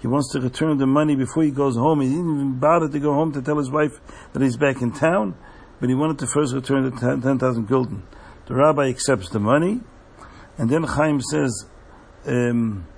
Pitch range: 120-150 Hz